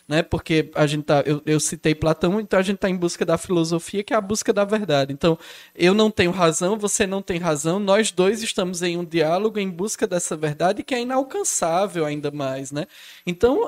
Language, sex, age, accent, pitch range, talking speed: Portuguese, male, 10-29, Brazilian, 160-220 Hz, 215 wpm